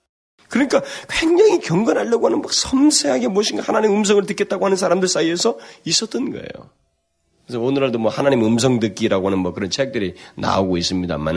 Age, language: 40-59, Korean